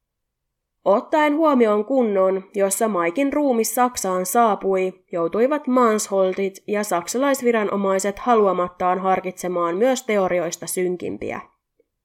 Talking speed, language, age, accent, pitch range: 85 wpm, Finnish, 20-39, native, 185-245 Hz